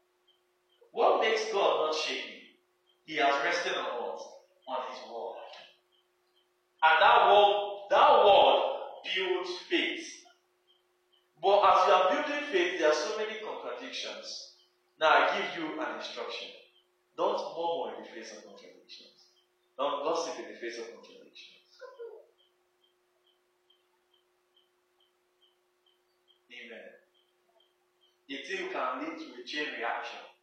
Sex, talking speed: male, 115 wpm